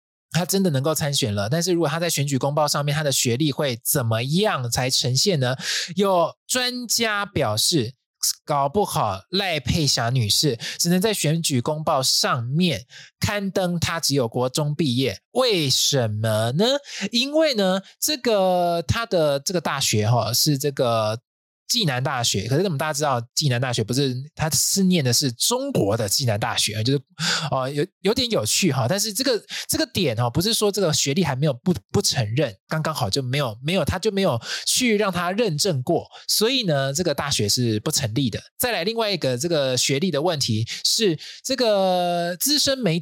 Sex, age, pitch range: male, 20-39, 130-185 Hz